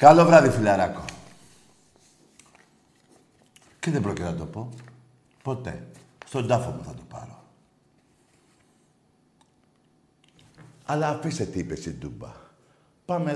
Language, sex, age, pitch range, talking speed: Greek, male, 60-79, 105-145 Hz, 105 wpm